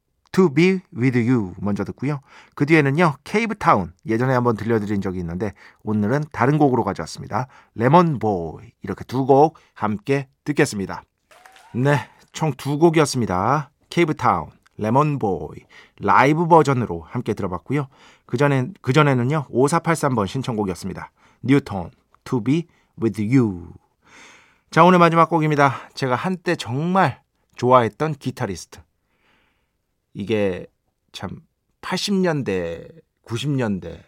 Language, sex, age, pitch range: Korean, male, 40-59, 105-160 Hz